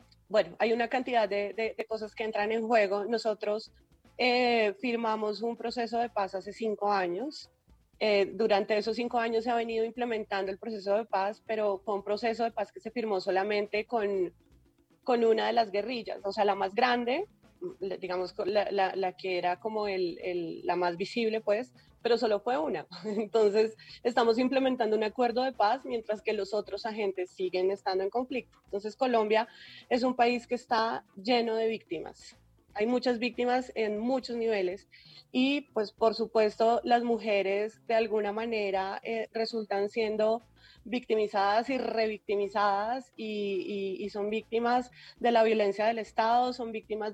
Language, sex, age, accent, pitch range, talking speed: Spanish, female, 30-49, Colombian, 205-235 Hz, 170 wpm